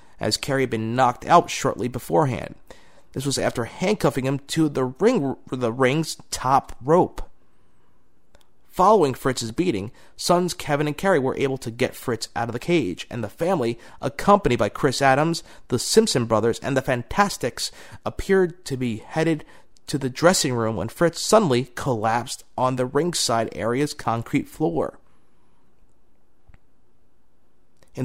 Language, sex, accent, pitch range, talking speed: English, male, American, 120-145 Hz, 145 wpm